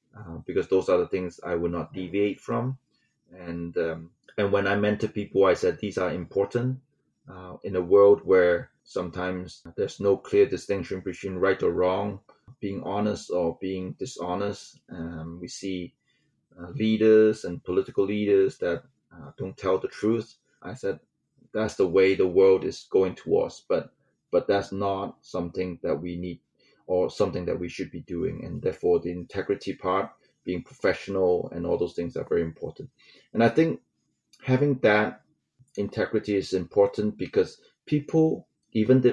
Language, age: English, 30-49